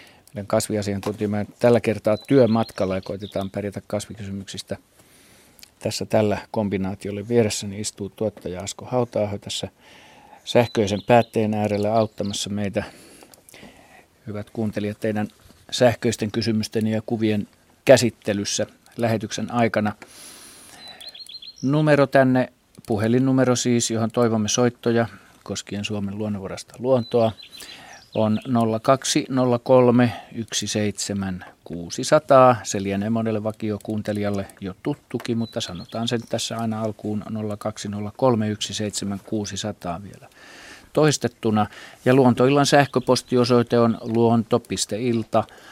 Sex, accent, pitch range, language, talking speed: male, native, 105-120 Hz, Finnish, 85 wpm